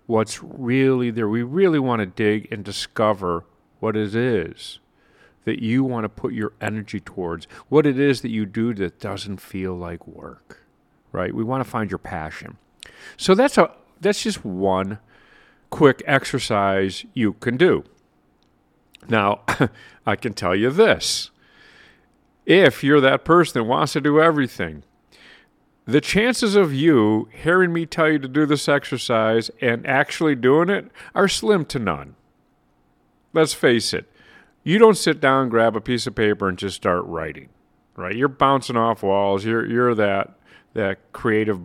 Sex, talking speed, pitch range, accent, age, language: male, 160 wpm, 100-145 Hz, American, 50-69, English